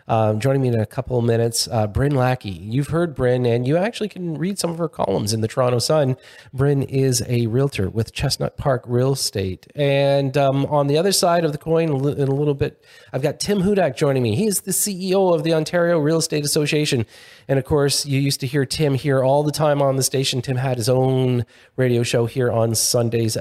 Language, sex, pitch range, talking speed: English, male, 125-170 Hz, 225 wpm